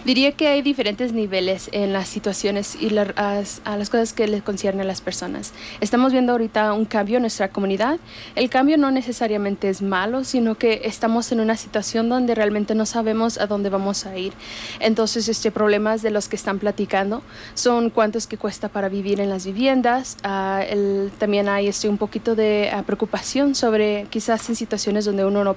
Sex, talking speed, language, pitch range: female, 195 wpm, English, 200-225 Hz